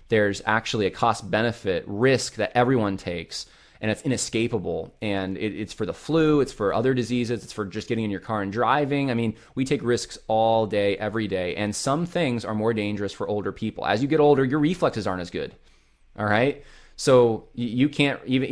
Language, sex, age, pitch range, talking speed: English, male, 20-39, 110-145 Hz, 205 wpm